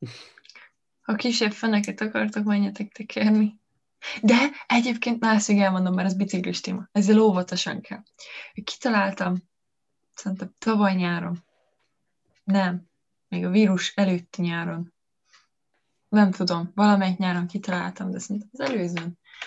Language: Hungarian